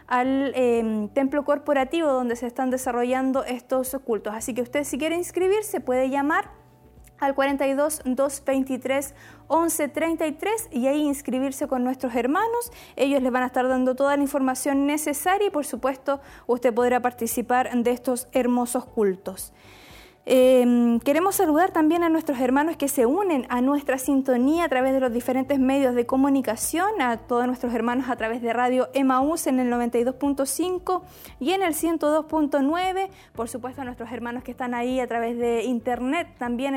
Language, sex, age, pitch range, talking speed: Spanish, female, 20-39, 245-290 Hz, 160 wpm